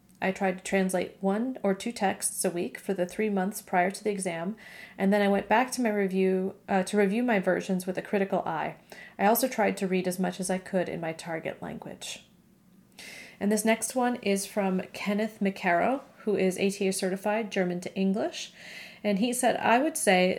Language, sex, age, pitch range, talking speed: English, female, 30-49, 185-215 Hz, 205 wpm